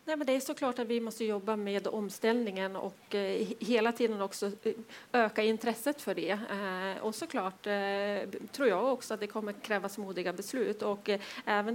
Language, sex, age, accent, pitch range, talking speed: Swedish, female, 30-49, native, 195-225 Hz, 190 wpm